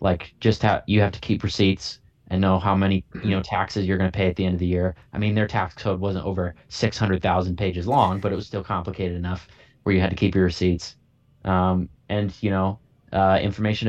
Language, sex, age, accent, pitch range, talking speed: English, male, 20-39, American, 90-105 Hz, 235 wpm